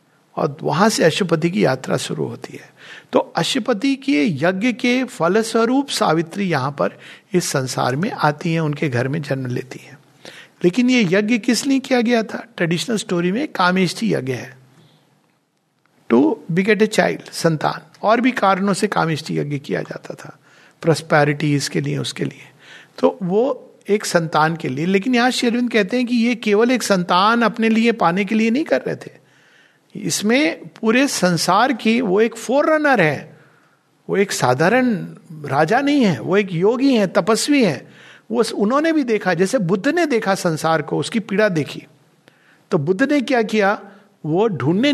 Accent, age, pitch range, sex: native, 50-69, 155-235 Hz, male